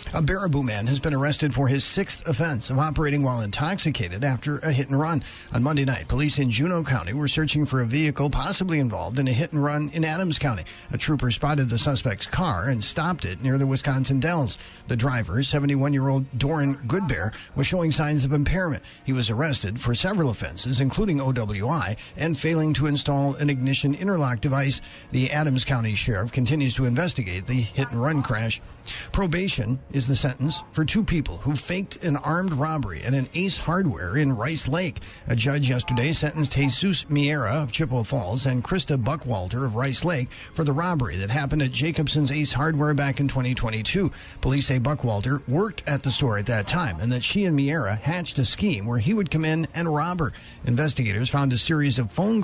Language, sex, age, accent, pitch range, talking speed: English, male, 50-69, American, 125-150 Hz, 190 wpm